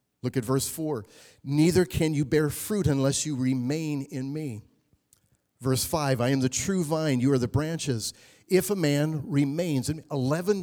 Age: 50-69